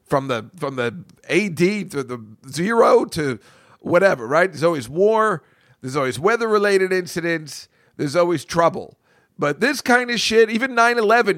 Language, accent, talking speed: English, American, 160 wpm